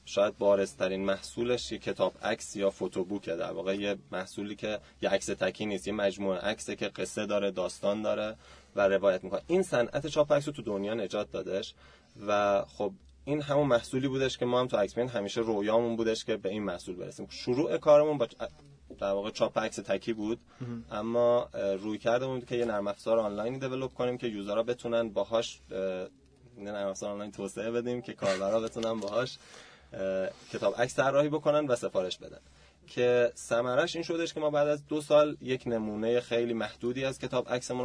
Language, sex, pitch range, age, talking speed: Persian, male, 100-125 Hz, 20-39, 180 wpm